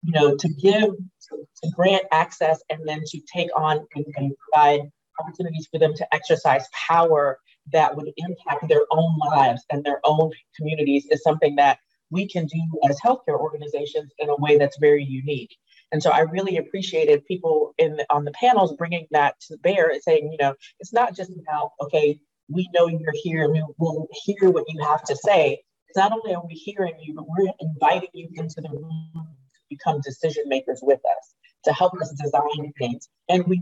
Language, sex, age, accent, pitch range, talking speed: English, female, 40-59, American, 145-185 Hz, 195 wpm